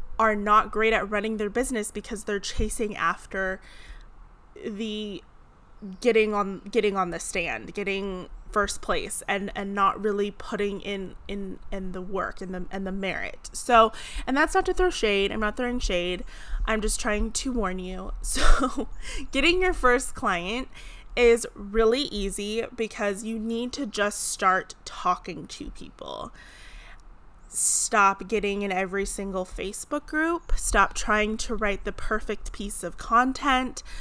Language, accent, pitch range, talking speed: English, American, 195-225 Hz, 150 wpm